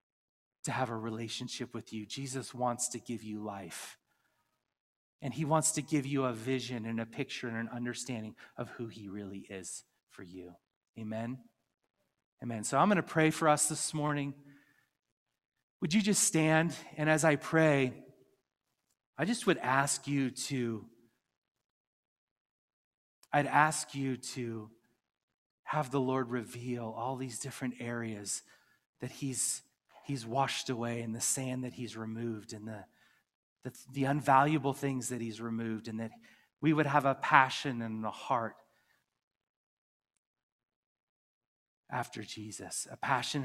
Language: English